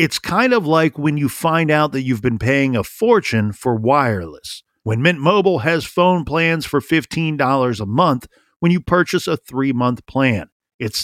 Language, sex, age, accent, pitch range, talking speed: English, male, 50-69, American, 130-170 Hz, 180 wpm